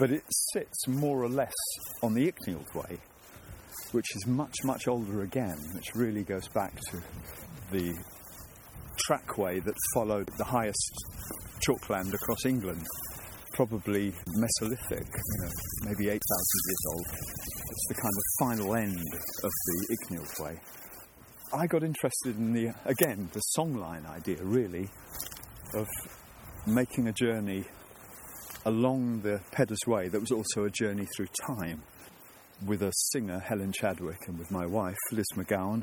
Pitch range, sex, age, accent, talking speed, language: 90-115 Hz, male, 40-59, British, 140 wpm, English